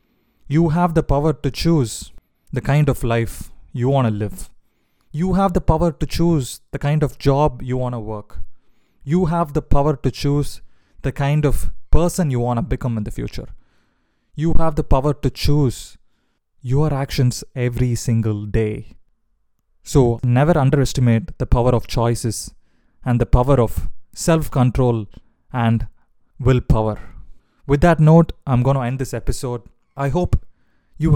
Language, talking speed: English, 160 wpm